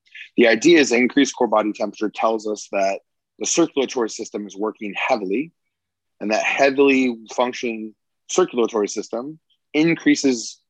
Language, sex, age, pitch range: English, male, 20-39, 105-135 Hz